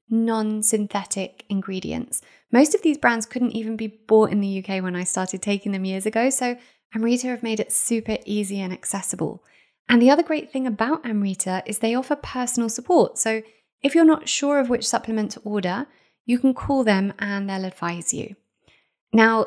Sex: female